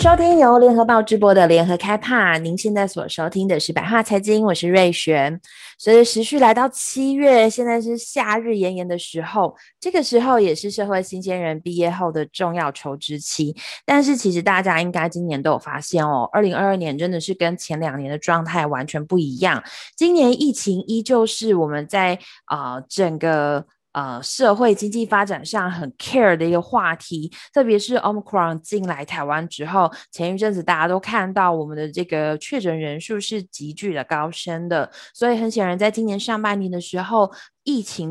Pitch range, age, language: 165-225 Hz, 20-39, Chinese